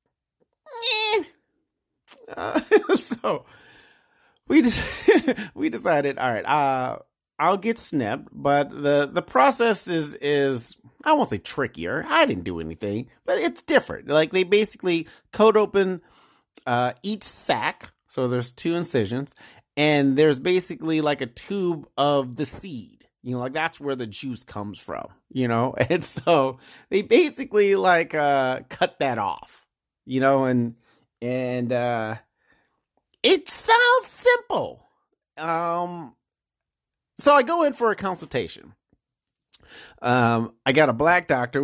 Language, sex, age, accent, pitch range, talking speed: English, male, 30-49, American, 125-195 Hz, 135 wpm